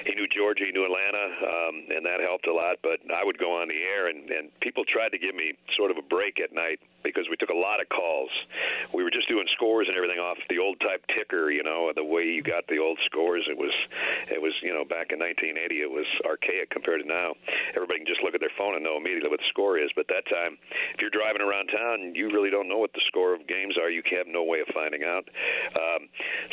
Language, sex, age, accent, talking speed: English, male, 50-69, American, 260 wpm